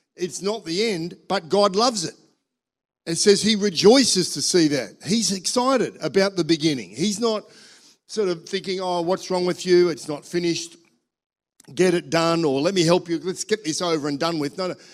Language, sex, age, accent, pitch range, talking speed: English, male, 50-69, Australian, 145-185 Hz, 200 wpm